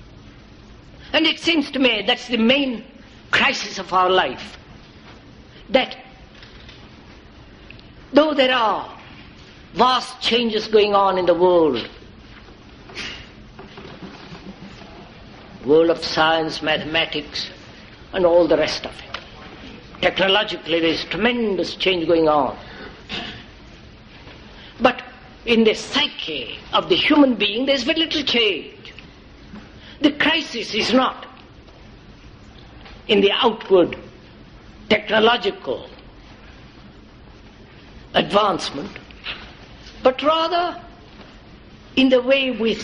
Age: 60-79